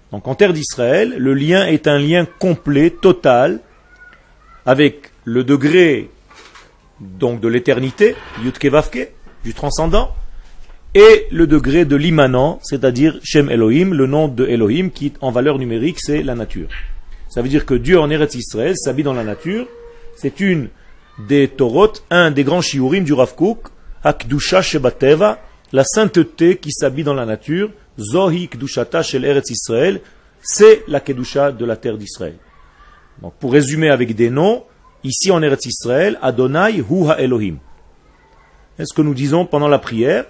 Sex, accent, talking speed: male, French, 150 wpm